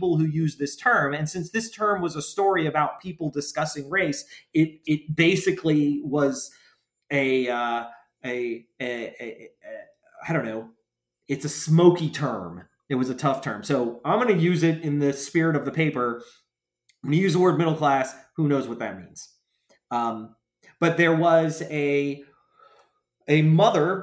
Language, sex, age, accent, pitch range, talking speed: English, male, 30-49, American, 140-175 Hz, 175 wpm